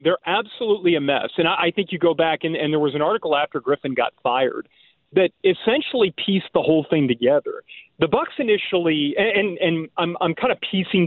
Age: 40-59